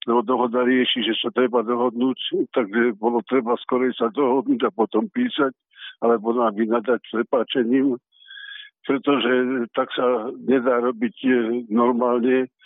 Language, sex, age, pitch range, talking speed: Slovak, male, 60-79, 125-145 Hz, 125 wpm